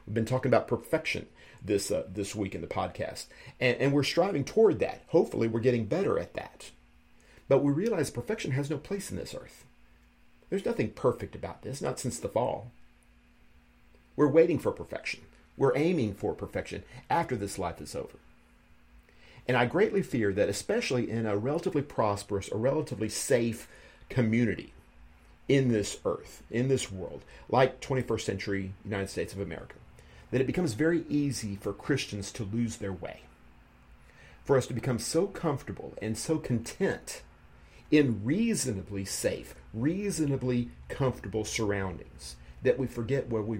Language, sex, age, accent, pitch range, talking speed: English, male, 50-69, American, 95-130 Hz, 155 wpm